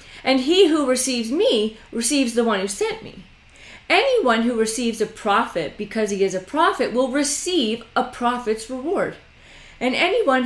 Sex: female